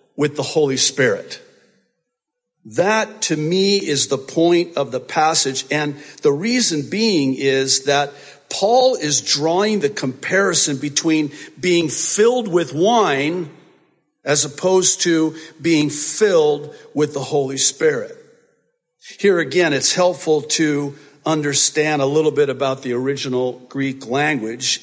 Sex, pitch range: male, 140-210 Hz